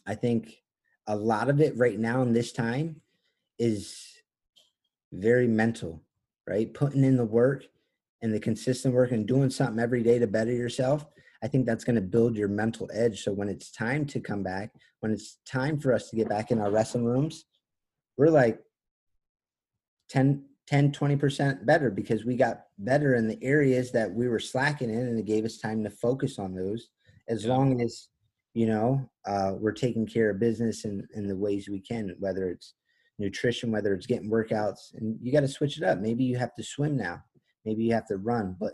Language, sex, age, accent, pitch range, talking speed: English, male, 30-49, American, 105-130 Hz, 200 wpm